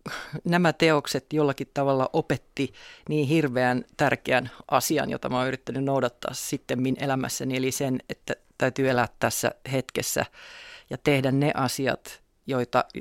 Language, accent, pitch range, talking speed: Finnish, native, 130-145 Hz, 130 wpm